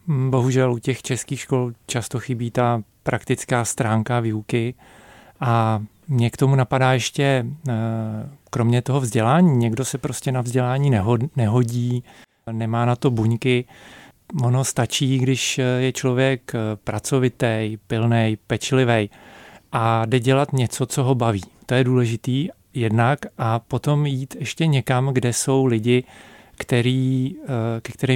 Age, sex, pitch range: 40-59, male, 115-130 Hz